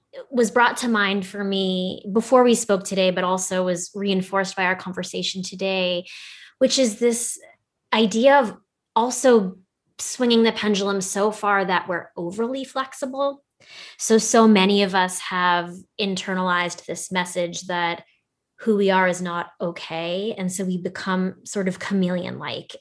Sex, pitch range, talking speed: female, 180-215 Hz, 150 wpm